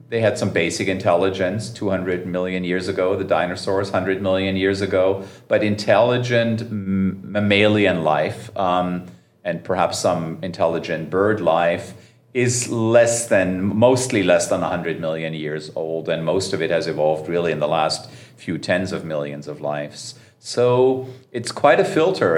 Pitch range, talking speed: 90-115 Hz, 155 wpm